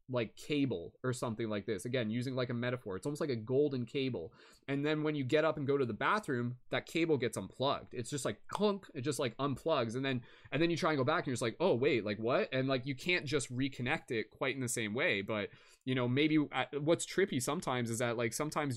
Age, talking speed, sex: 20-39, 260 wpm, male